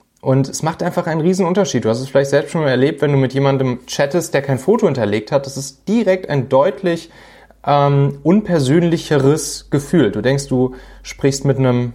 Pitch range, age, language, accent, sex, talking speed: 120-150 Hz, 30-49, German, German, male, 190 wpm